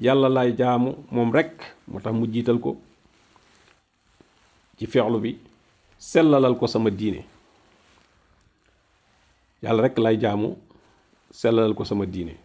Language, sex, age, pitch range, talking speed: French, male, 50-69, 105-135 Hz, 100 wpm